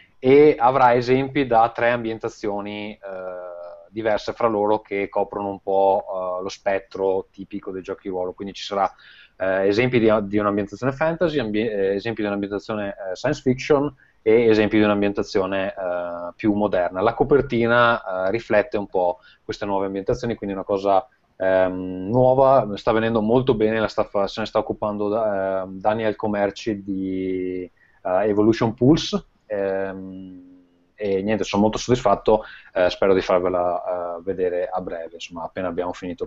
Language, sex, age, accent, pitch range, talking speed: Italian, male, 20-39, native, 95-120 Hz, 145 wpm